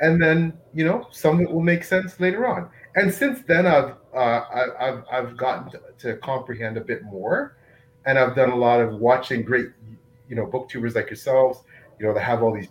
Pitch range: 115-135 Hz